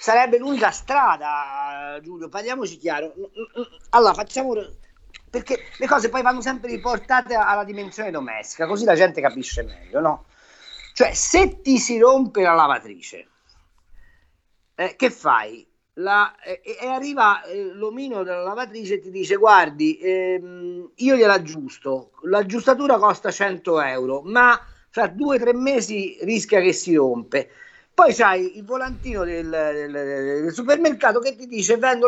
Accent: native